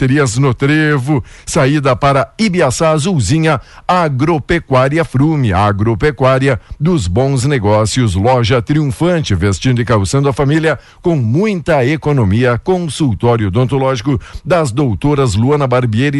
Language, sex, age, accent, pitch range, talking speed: Portuguese, male, 60-79, Brazilian, 120-155 Hz, 105 wpm